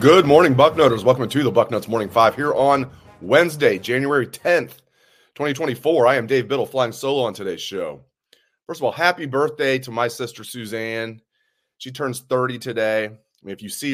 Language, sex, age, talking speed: English, male, 30-49, 170 wpm